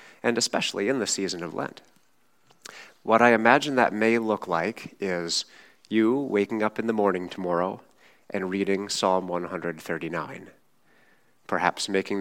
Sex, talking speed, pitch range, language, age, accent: male, 140 wpm, 90-105 Hz, English, 30-49, American